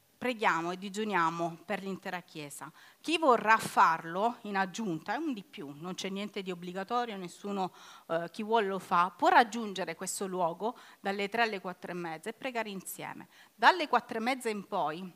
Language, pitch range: Italian, 185-230 Hz